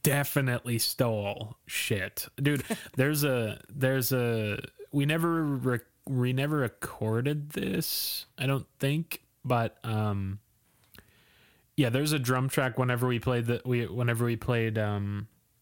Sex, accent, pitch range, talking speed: male, American, 110-135 Hz, 125 wpm